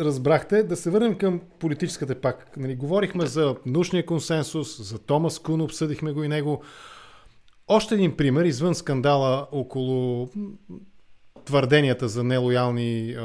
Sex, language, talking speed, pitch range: male, English, 125 wpm, 130-170 Hz